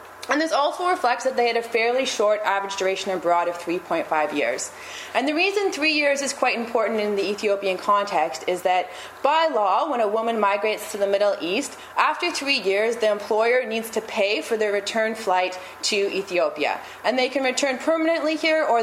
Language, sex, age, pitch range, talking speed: English, female, 20-39, 190-250 Hz, 195 wpm